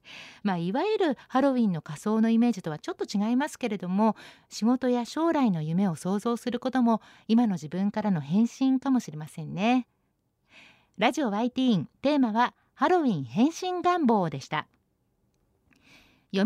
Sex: female